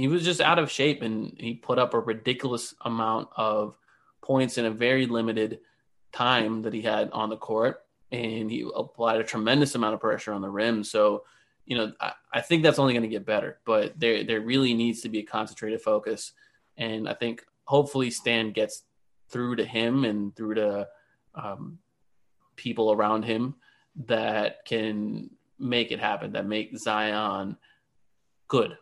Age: 20-39